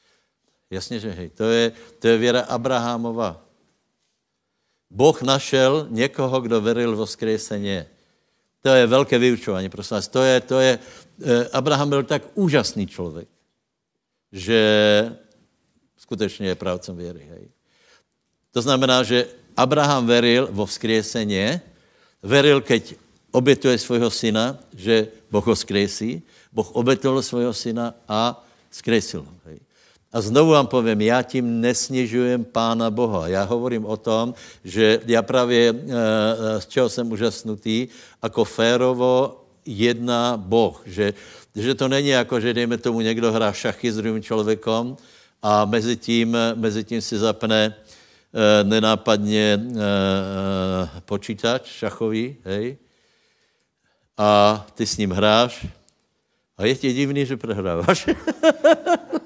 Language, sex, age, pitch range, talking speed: Slovak, male, 60-79, 110-125 Hz, 120 wpm